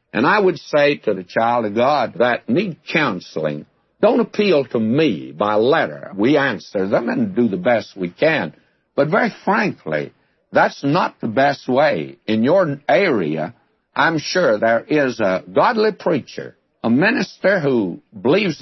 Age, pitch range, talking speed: 60-79, 105-145 Hz, 160 wpm